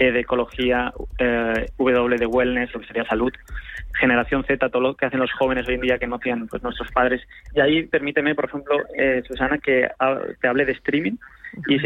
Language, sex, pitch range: Spanish, male, 125-140 Hz